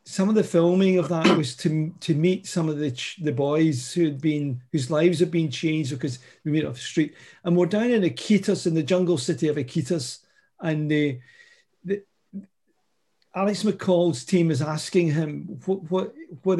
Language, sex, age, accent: English, male, 50-69, British